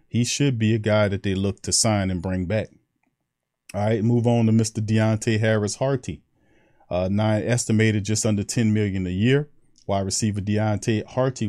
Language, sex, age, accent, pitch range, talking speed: English, male, 40-59, American, 95-110 Hz, 180 wpm